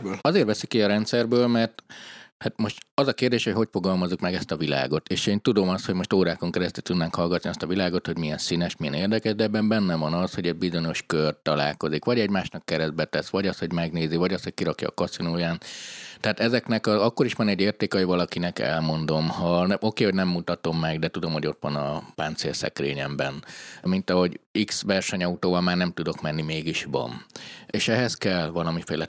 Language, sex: Hungarian, male